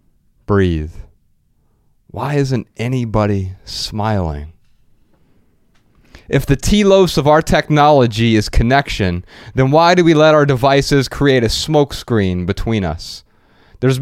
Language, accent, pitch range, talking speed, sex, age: English, American, 95-125 Hz, 115 wpm, male, 30-49